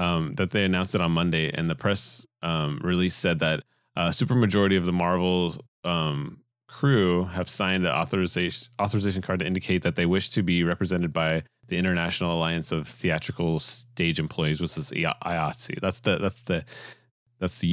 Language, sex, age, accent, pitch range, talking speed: English, male, 30-49, American, 85-110 Hz, 185 wpm